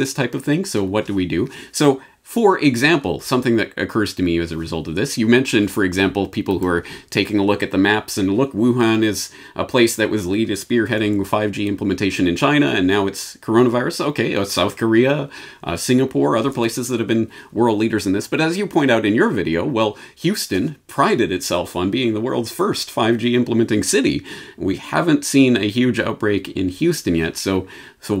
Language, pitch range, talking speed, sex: English, 95-120 Hz, 215 wpm, male